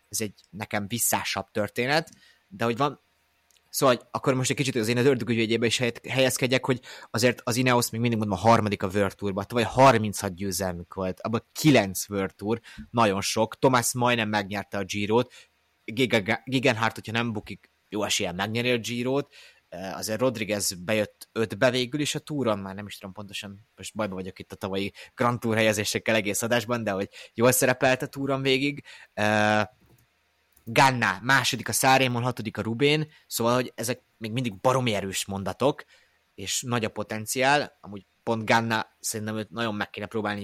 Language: Hungarian